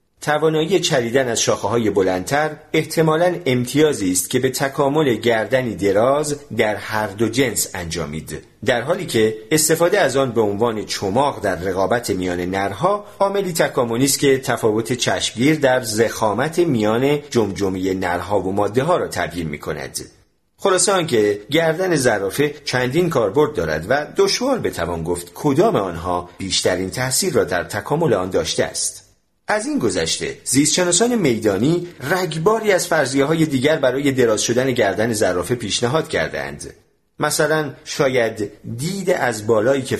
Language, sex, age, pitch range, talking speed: Persian, male, 40-59, 100-155 Hz, 140 wpm